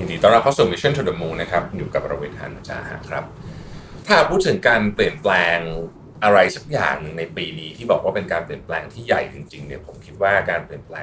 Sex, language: male, Thai